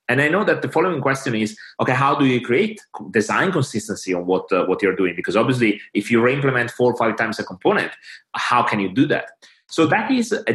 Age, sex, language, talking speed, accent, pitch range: 30-49, male, English, 235 wpm, Italian, 115-150 Hz